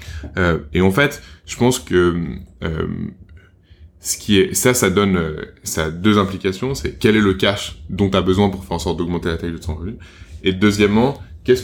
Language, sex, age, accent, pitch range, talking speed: French, male, 20-39, French, 85-100 Hz, 205 wpm